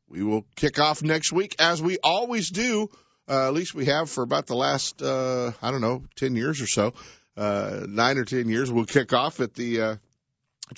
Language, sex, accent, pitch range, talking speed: English, male, American, 105-140 Hz, 210 wpm